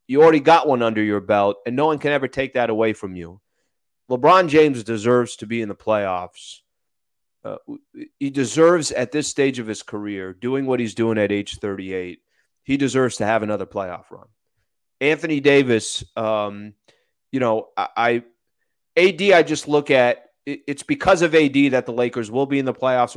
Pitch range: 110-150 Hz